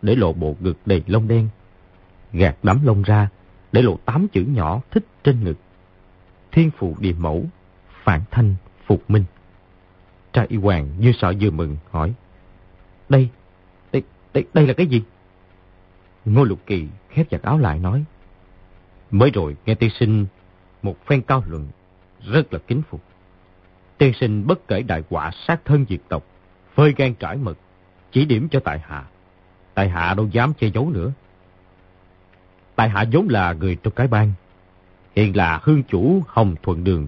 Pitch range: 90-120 Hz